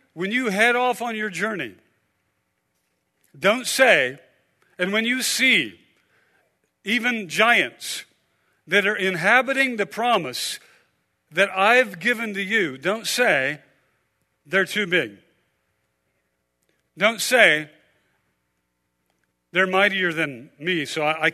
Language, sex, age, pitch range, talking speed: English, male, 50-69, 150-210 Hz, 105 wpm